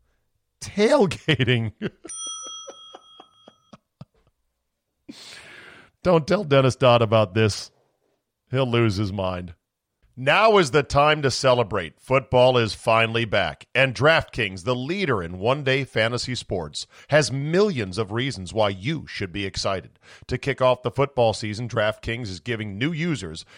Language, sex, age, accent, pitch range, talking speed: English, male, 40-59, American, 105-140 Hz, 125 wpm